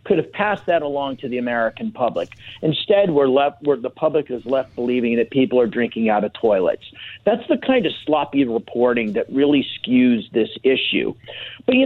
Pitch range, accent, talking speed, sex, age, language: 120-145 Hz, American, 185 wpm, male, 50-69, English